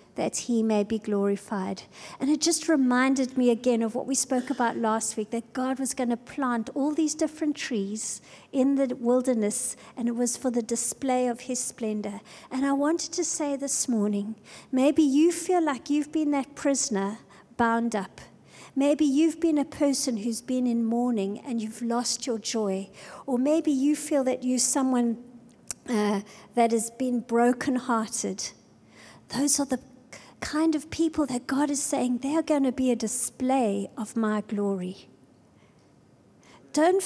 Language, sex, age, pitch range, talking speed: English, female, 50-69, 220-270 Hz, 170 wpm